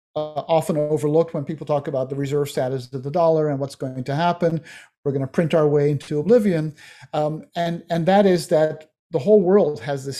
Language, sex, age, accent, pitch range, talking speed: English, male, 50-69, American, 145-175 Hz, 220 wpm